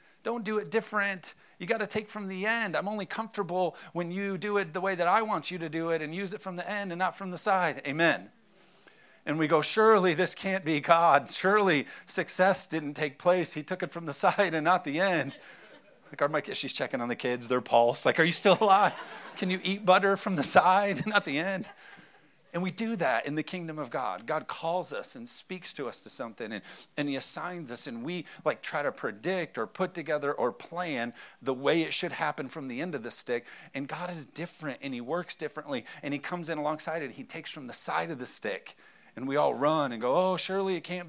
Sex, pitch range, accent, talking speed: male, 155-195 Hz, American, 240 wpm